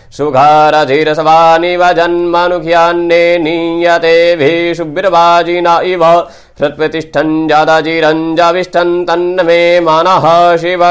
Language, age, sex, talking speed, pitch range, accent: Hindi, 30-49, male, 65 wpm, 165-175 Hz, native